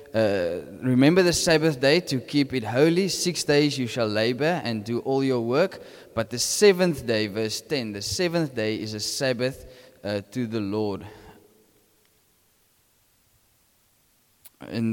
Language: English